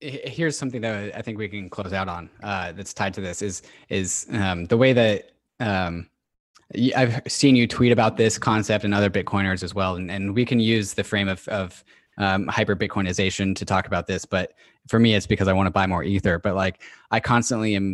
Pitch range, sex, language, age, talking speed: 95-115 Hz, male, English, 20-39, 220 wpm